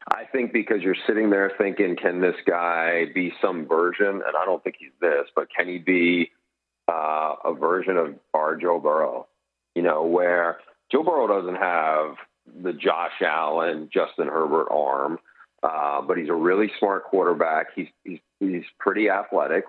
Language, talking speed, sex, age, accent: English, 170 wpm, male, 40-59, American